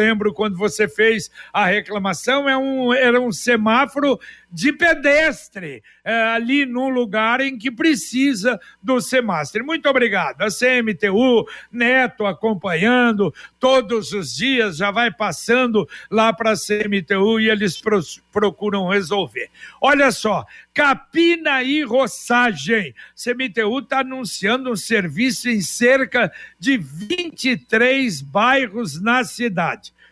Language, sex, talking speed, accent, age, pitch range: Portuguese, male, 115 wpm, Brazilian, 60-79, 210-255 Hz